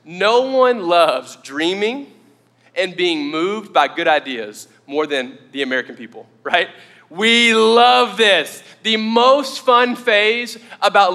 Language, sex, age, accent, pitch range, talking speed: English, male, 20-39, American, 185-255 Hz, 130 wpm